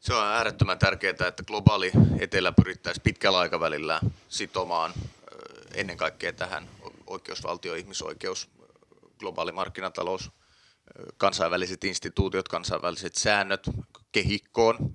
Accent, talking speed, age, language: native, 90 wpm, 30-49, Finnish